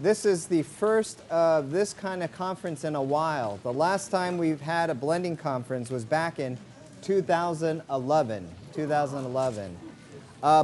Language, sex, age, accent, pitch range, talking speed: English, male, 40-59, American, 140-180 Hz, 145 wpm